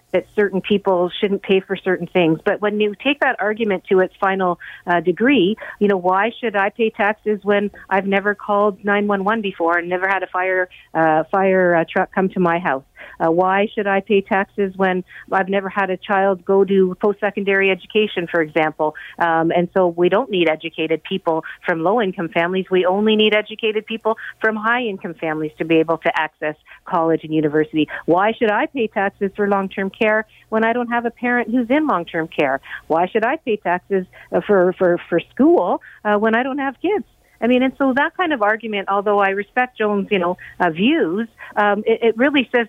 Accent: American